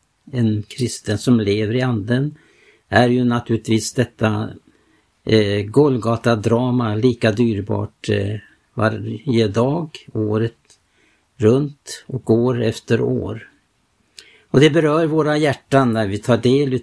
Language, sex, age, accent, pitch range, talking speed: Swedish, male, 60-79, Norwegian, 110-130 Hz, 120 wpm